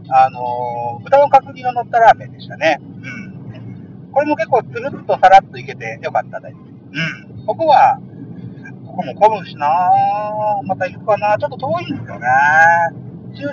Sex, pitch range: male, 155-260 Hz